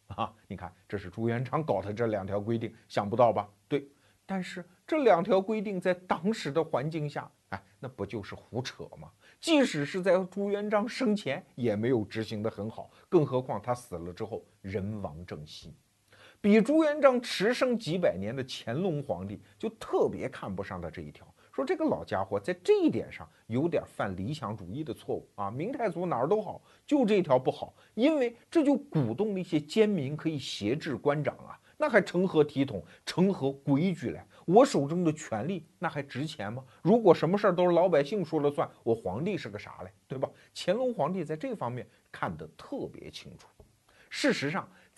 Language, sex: Chinese, male